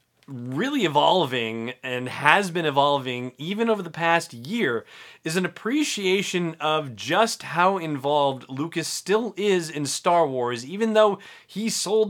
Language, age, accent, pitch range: English, 30-49, American, 120-170 Hz